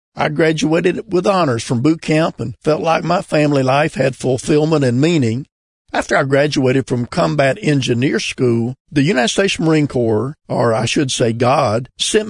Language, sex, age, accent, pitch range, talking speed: English, male, 50-69, American, 125-165 Hz, 170 wpm